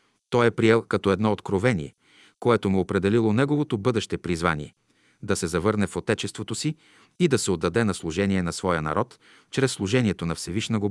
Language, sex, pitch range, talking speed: Bulgarian, male, 95-125 Hz, 180 wpm